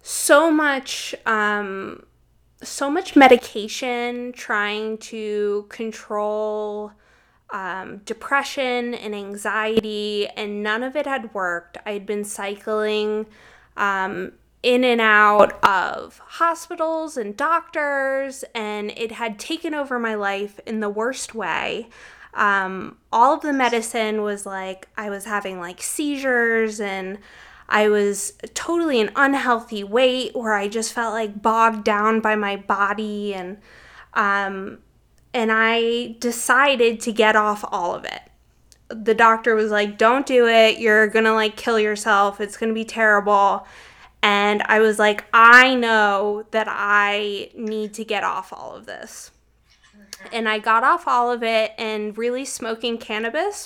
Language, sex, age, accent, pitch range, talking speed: English, female, 20-39, American, 210-240 Hz, 140 wpm